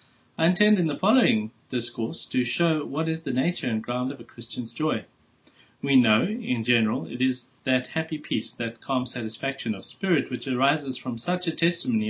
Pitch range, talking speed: 115-150 Hz, 190 wpm